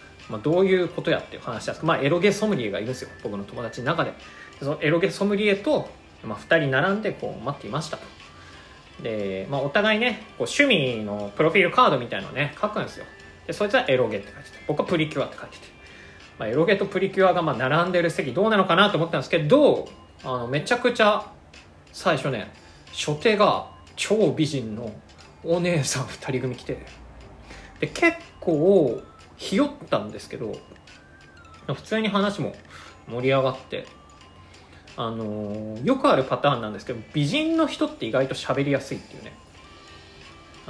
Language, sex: Japanese, male